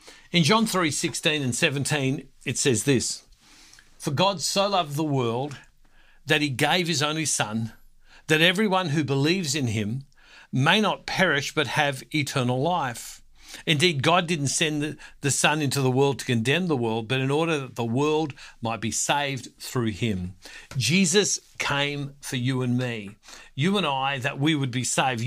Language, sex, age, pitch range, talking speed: English, male, 60-79, 125-165 Hz, 170 wpm